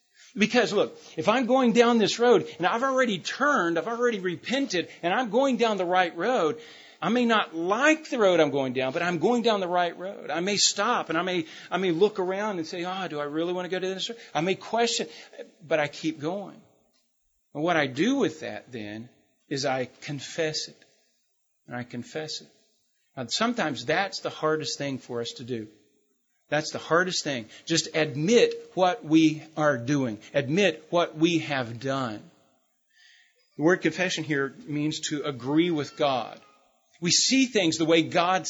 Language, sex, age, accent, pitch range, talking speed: English, male, 40-59, American, 145-205 Hz, 190 wpm